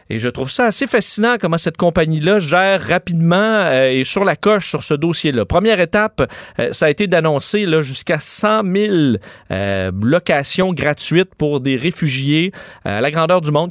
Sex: male